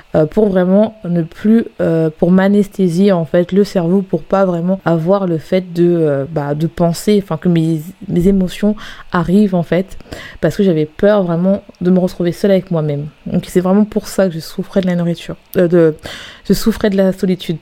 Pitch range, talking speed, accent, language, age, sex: 175-215 Hz, 200 wpm, French, French, 20-39, female